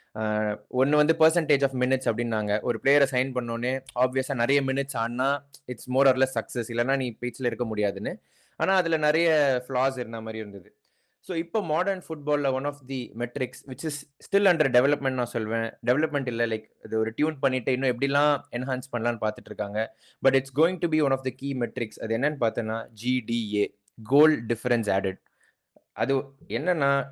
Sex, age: male, 20-39